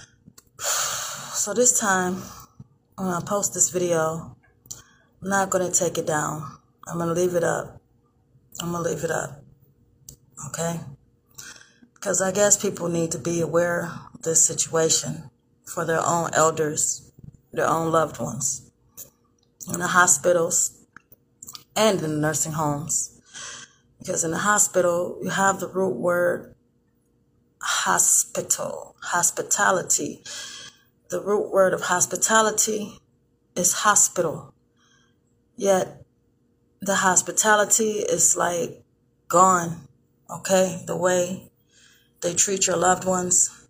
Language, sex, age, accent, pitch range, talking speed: English, female, 20-39, American, 150-185 Hz, 120 wpm